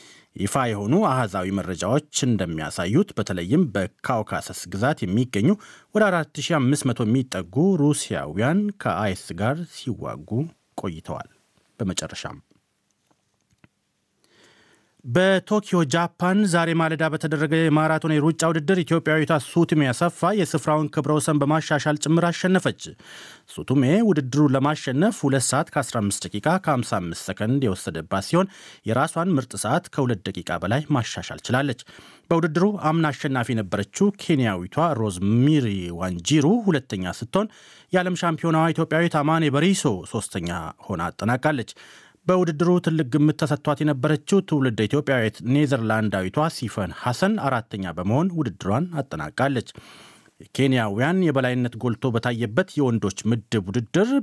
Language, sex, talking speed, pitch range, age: Amharic, male, 95 wpm, 115-165 Hz, 30-49